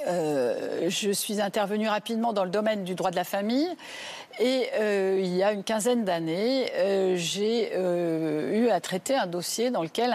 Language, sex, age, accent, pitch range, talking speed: French, female, 50-69, French, 190-245 Hz, 175 wpm